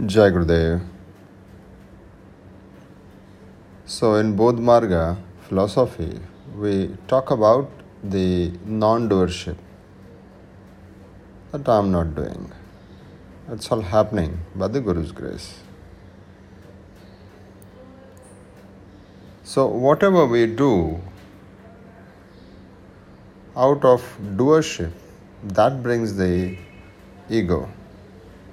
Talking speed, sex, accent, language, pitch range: 70 wpm, male, native, Hindi, 95-110 Hz